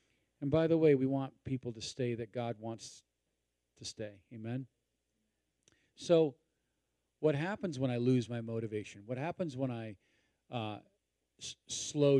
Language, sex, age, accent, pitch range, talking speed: English, male, 40-59, American, 110-135 Hz, 145 wpm